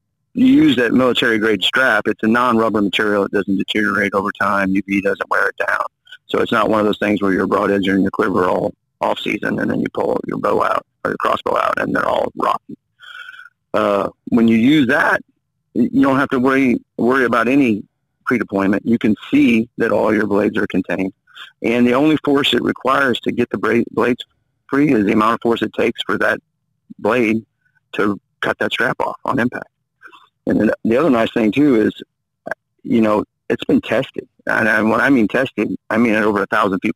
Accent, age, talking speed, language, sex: American, 40-59, 210 wpm, English, male